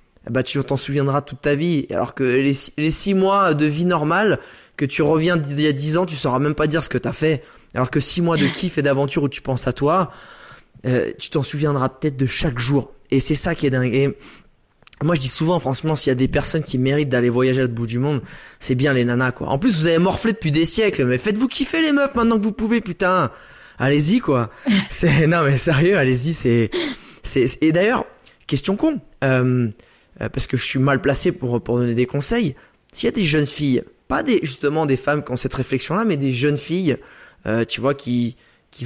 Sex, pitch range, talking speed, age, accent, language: male, 130-165 Hz, 230 wpm, 20-39, French, French